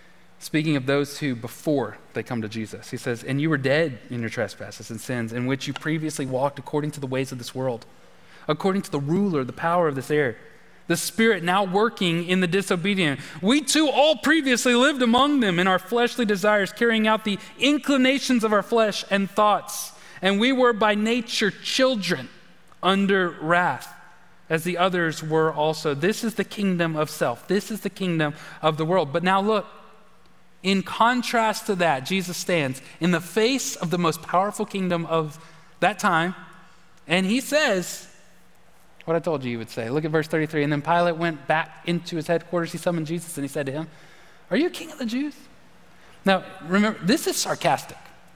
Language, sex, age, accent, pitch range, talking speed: English, male, 30-49, American, 155-220 Hz, 190 wpm